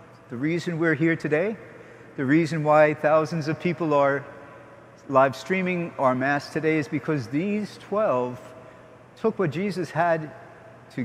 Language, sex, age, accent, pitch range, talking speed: English, male, 50-69, American, 125-155 Hz, 140 wpm